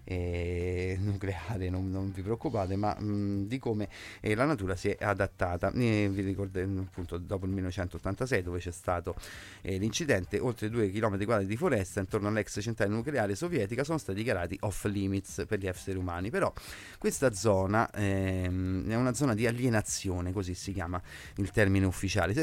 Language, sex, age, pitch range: Italian, male, 30-49, 95-120 Hz